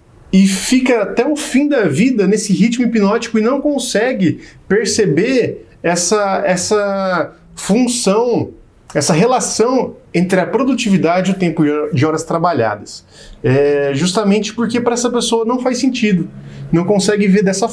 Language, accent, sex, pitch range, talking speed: Portuguese, Brazilian, male, 170-225 Hz, 140 wpm